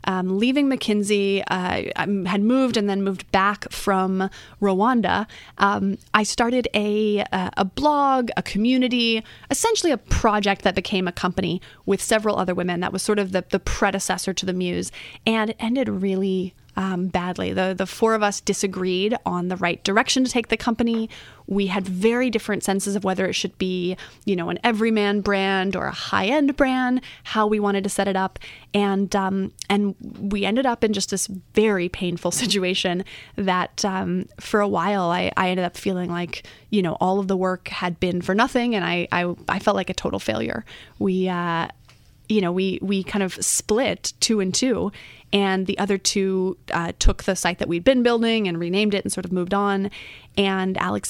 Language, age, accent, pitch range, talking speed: English, 20-39, American, 185-215 Hz, 195 wpm